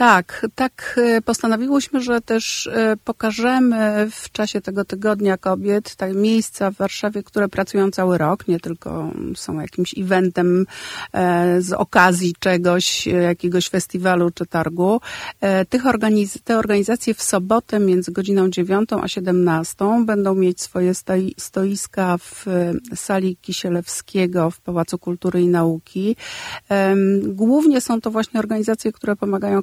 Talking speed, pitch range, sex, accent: 120 wpm, 175-205 Hz, female, native